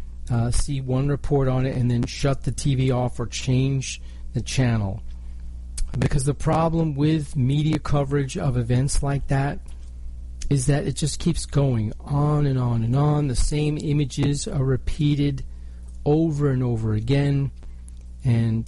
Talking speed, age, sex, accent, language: 150 wpm, 40-59, male, American, English